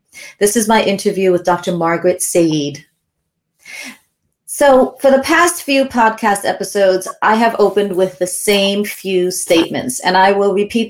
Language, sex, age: English, female, 30-49